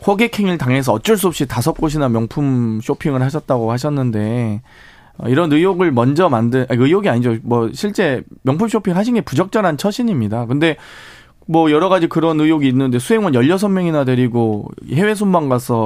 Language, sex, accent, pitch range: Korean, male, native, 125-180 Hz